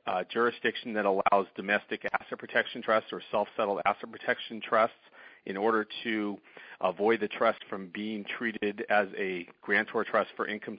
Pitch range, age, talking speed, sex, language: 100-115 Hz, 40-59, 155 wpm, male, English